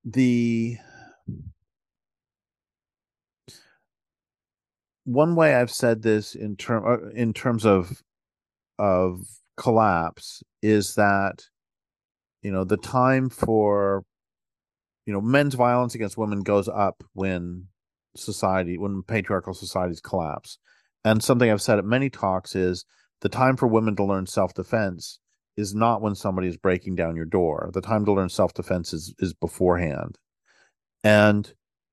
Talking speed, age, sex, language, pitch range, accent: 130 wpm, 40-59, male, English, 95-120 Hz, American